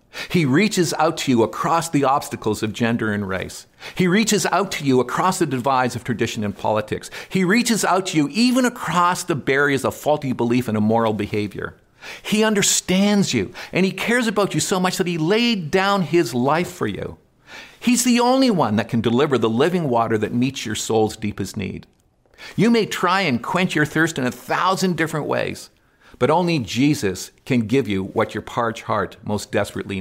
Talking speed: 195 wpm